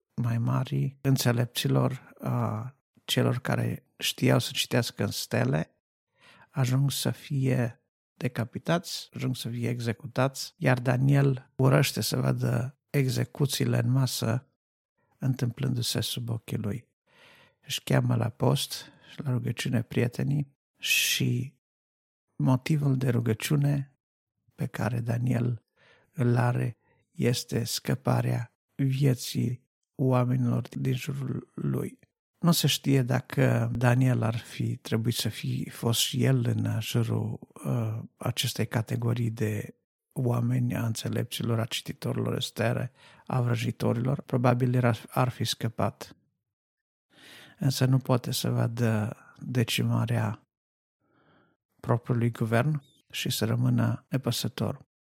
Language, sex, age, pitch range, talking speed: Romanian, male, 50-69, 115-135 Hz, 105 wpm